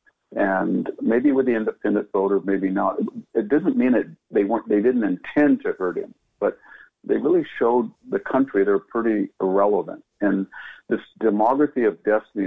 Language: English